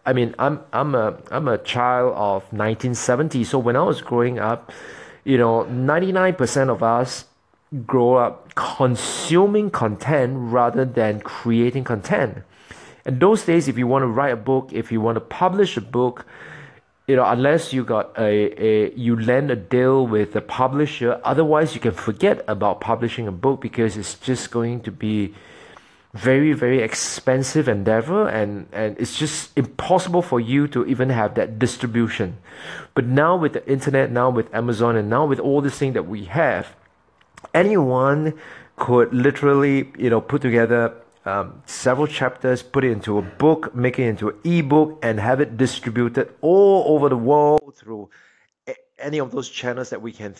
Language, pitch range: English, 115-140 Hz